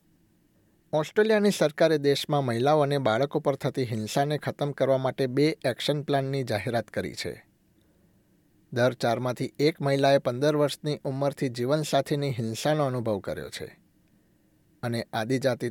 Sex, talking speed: male, 130 wpm